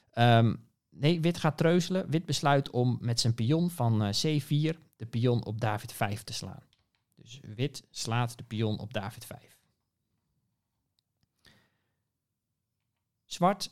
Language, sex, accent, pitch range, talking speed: Dutch, male, Dutch, 110-145 Hz, 130 wpm